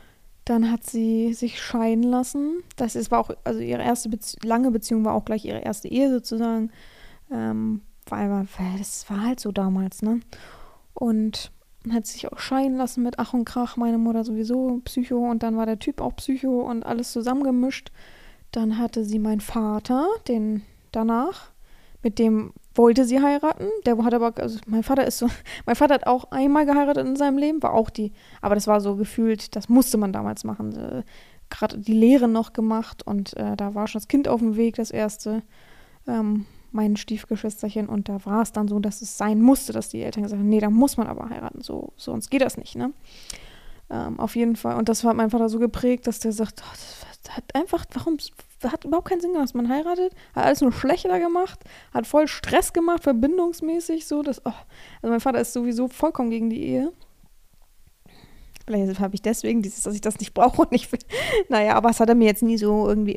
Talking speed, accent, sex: 205 wpm, German, female